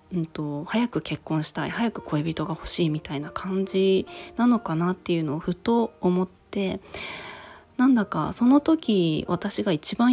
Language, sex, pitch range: Japanese, female, 170-230 Hz